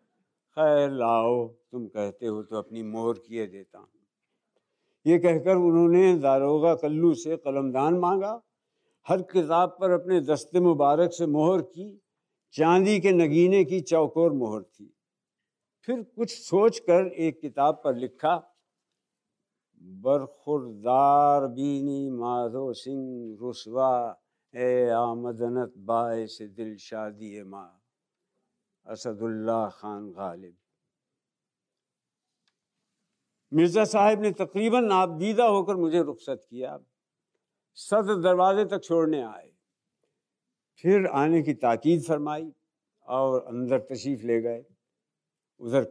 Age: 60-79